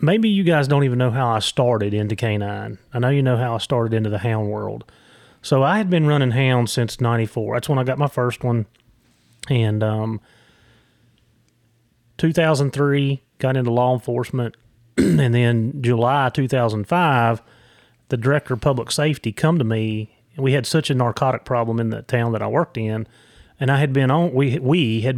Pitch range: 115-140 Hz